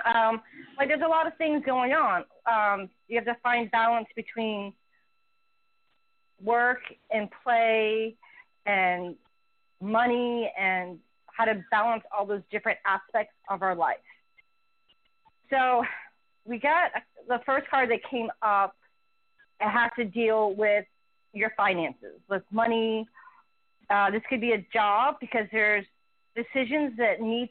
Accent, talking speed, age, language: American, 135 wpm, 40-59, English